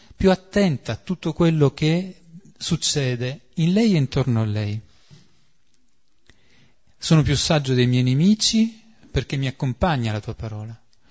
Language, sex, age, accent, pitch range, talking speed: Italian, male, 40-59, native, 125-165 Hz, 135 wpm